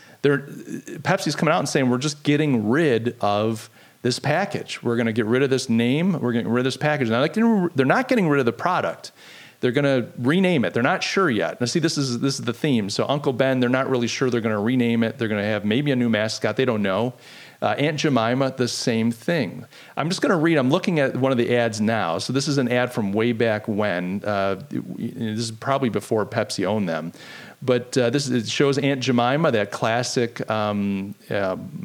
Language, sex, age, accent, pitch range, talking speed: English, male, 40-59, American, 115-140 Hz, 220 wpm